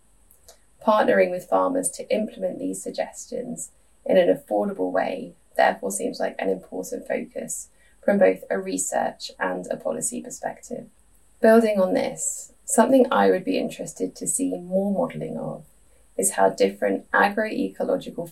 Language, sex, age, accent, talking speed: English, female, 10-29, British, 140 wpm